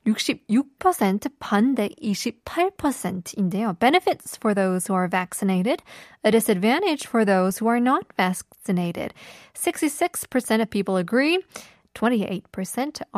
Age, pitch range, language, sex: 20-39, 195-255 Hz, Korean, female